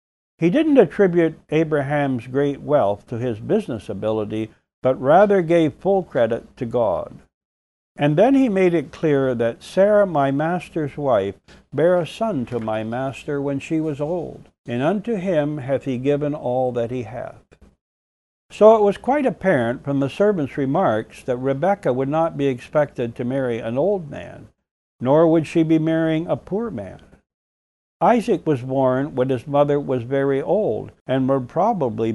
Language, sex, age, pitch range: English, male, 60-79, 115-170 Hz